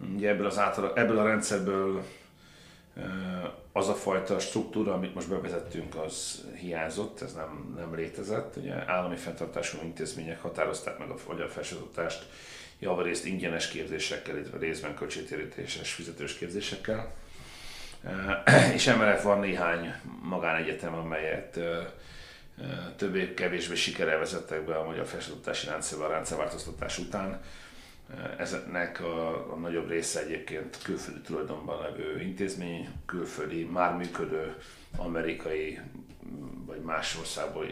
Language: Hungarian